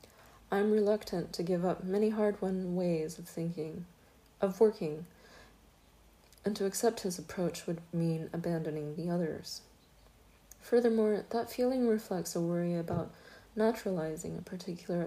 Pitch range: 170-210 Hz